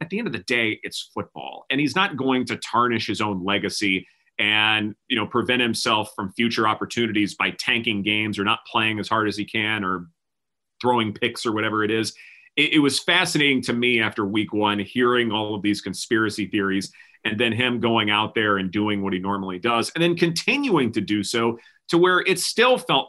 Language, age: English, 30-49